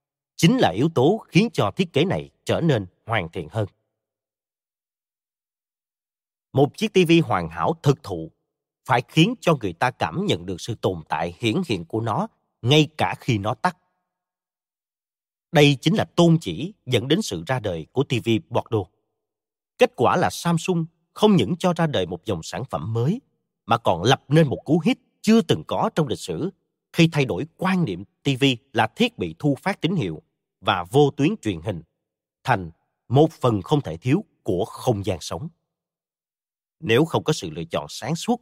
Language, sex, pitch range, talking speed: Vietnamese, male, 110-170 Hz, 185 wpm